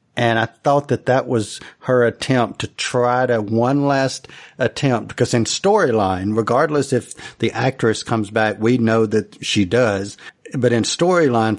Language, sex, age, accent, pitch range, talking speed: English, male, 50-69, American, 110-130 Hz, 160 wpm